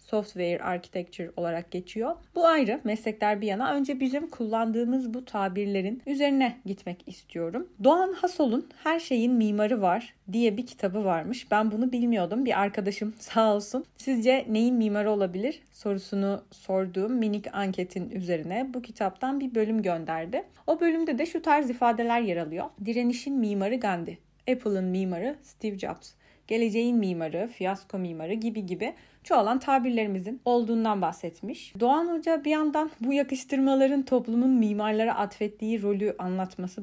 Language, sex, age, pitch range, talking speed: Turkish, female, 30-49, 190-250 Hz, 135 wpm